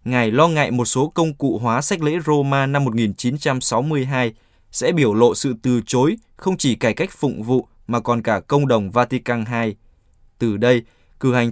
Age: 20-39